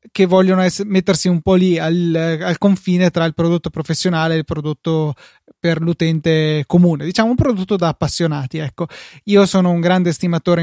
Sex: male